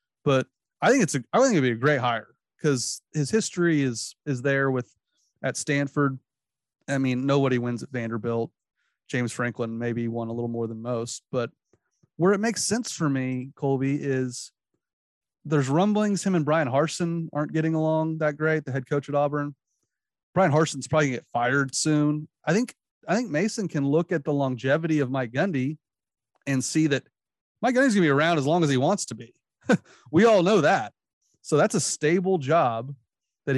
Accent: American